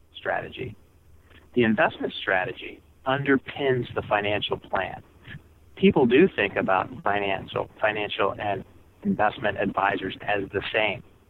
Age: 40-59